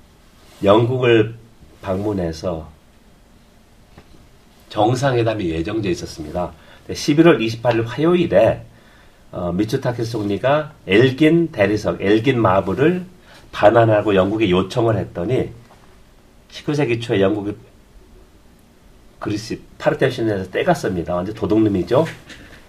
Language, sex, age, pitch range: Korean, male, 40-59, 100-135 Hz